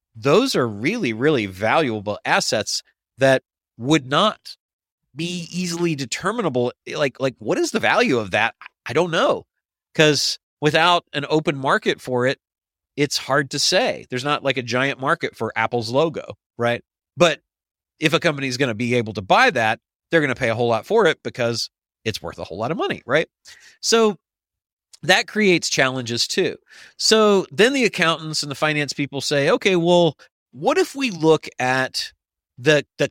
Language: English